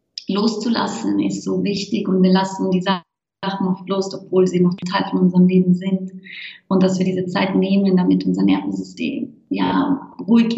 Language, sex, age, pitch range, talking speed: German, female, 20-39, 185-230 Hz, 170 wpm